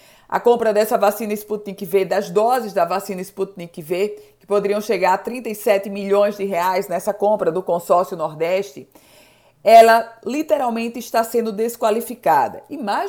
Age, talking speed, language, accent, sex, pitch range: 50-69, 145 wpm, Portuguese, Brazilian, female, 185-240 Hz